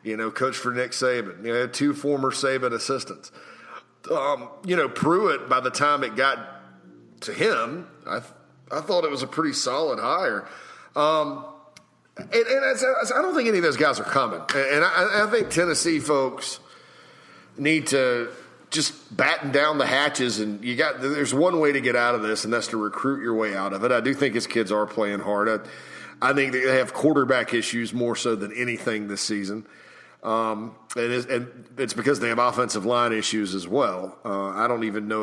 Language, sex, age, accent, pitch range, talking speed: English, male, 40-59, American, 110-135 Hz, 200 wpm